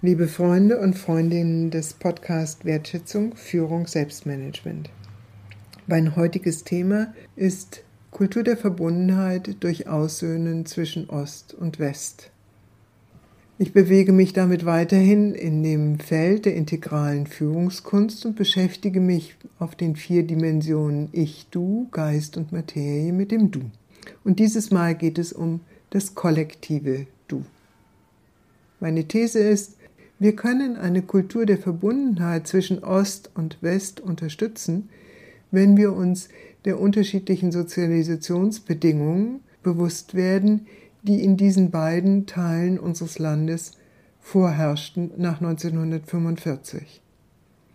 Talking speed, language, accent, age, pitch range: 110 wpm, German, German, 60-79, 165-195 Hz